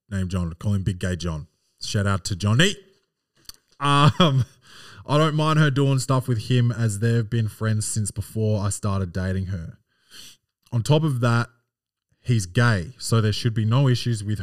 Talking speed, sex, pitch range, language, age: 180 wpm, male, 100-130 Hz, English, 20-39